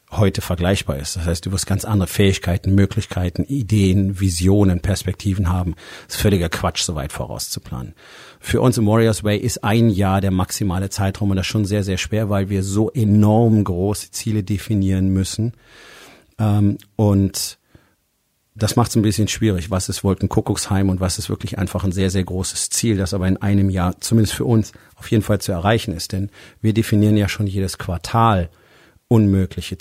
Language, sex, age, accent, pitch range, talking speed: German, male, 40-59, German, 95-110 Hz, 180 wpm